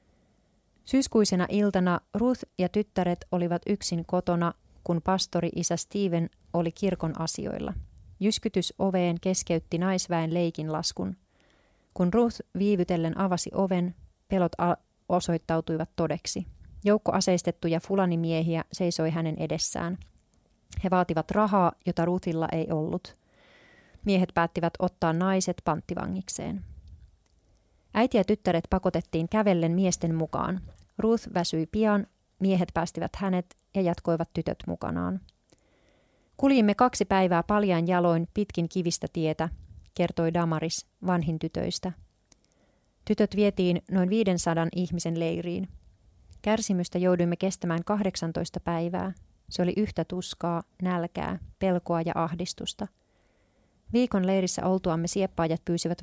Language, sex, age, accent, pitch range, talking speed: Finnish, female, 30-49, native, 165-190 Hz, 105 wpm